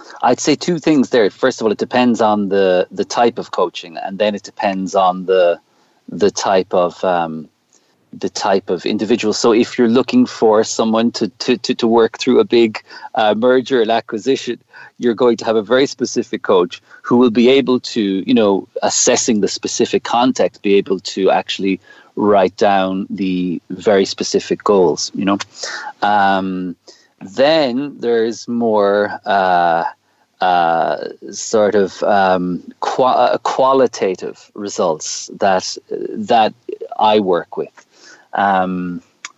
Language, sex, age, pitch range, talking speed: English, male, 30-49, 100-130 Hz, 145 wpm